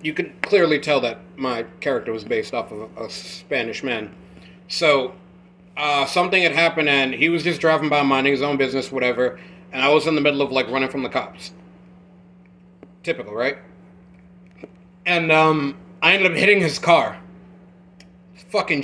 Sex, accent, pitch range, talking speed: male, American, 145-180 Hz, 170 wpm